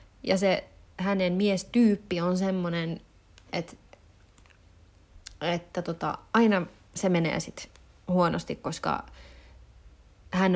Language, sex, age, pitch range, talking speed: Finnish, female, 30-49, 160-205 Hz, 90 wpm